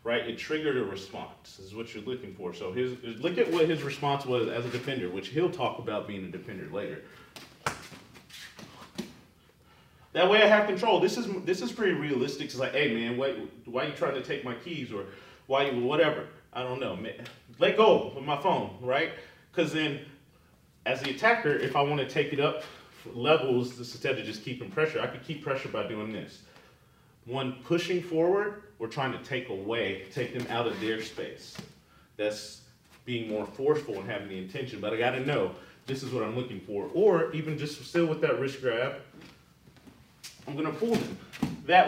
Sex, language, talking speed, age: male, English, 195 wpm, 30-49